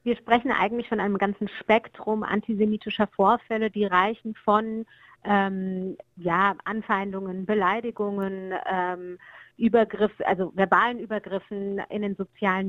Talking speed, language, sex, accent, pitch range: 115 wpm, German, female, German, 190-220 Hz